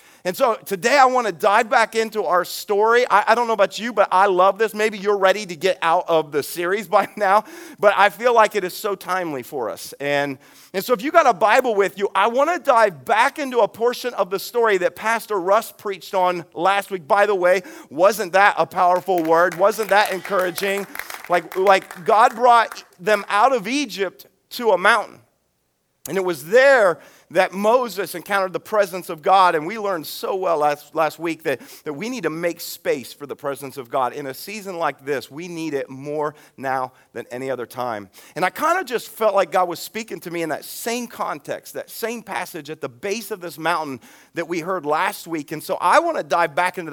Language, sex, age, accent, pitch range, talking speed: English, male, 40-59, American, 170-220 Hz, 225 wpm